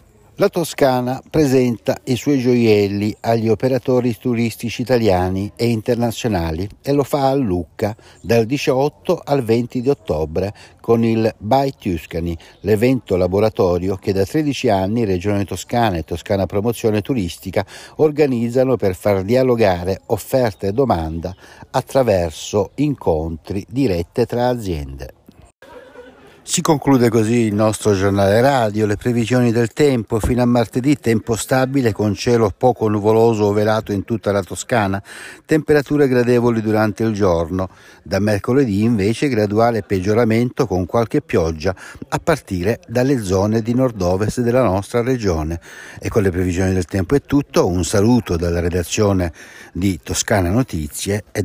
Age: 60-79